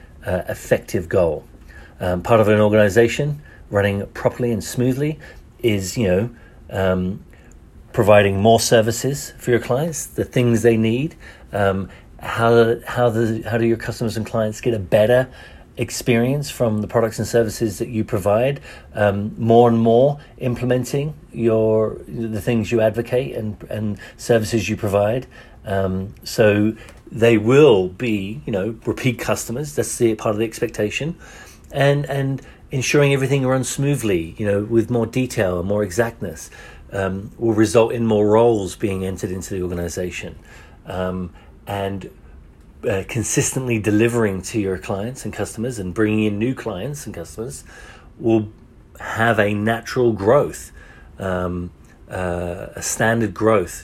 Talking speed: 145 wpm